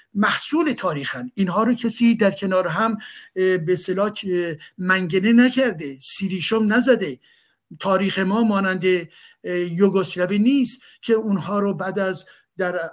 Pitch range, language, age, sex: 180-215 Hz, Persian, 60-79, male